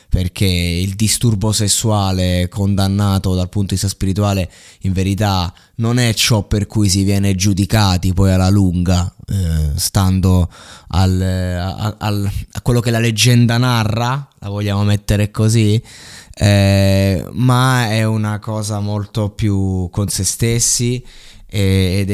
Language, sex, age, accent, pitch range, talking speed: Italian, male, 20-39, native, 100-115 Hz, 125 wpm